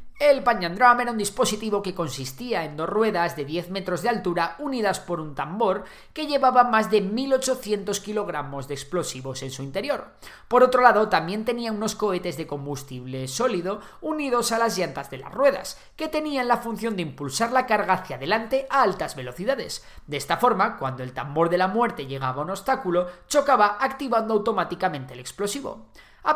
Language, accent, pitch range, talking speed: Spanish, Spanish, 155-235 Hz, 180 wpm